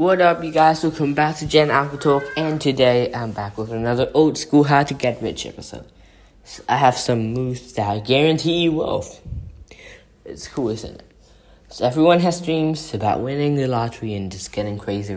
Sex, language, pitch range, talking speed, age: male, English, 115-155 Hz, 175 wpm, 10-29